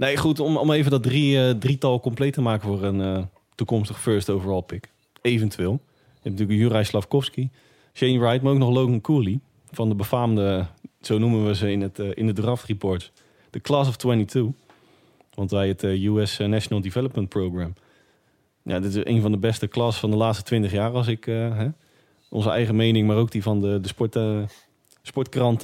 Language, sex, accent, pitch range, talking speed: Dutch, male, Dutch, 105-135 Hz, 205 wpm